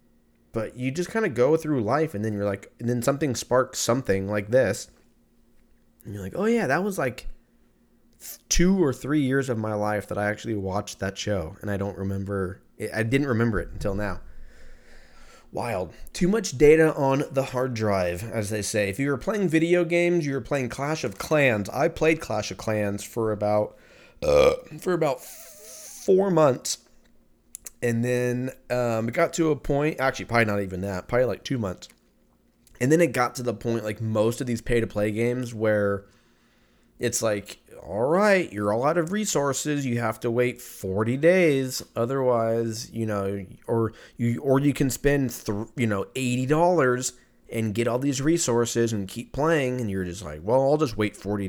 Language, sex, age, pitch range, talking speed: English, male, 20-39, 105-140 Hz, 190 wpm